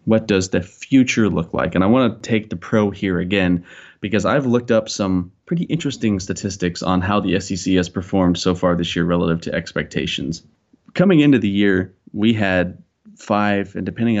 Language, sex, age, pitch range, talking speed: English, male, 30-49, 90-105 Hz, 190 wpm